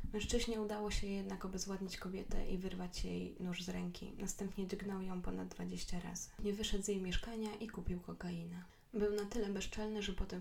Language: Polish